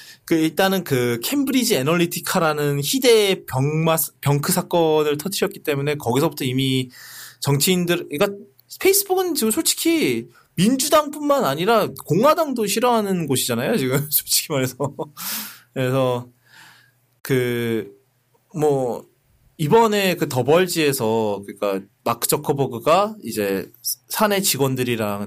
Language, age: English, 20-39